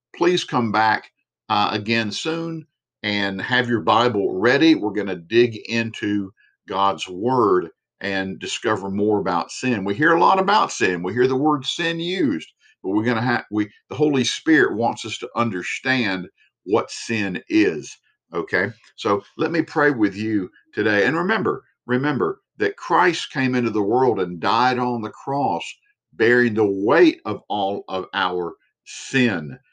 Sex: male